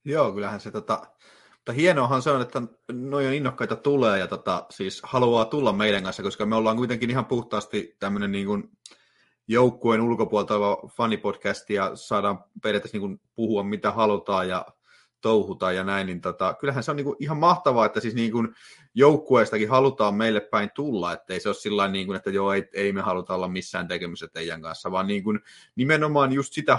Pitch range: 100-130 Hz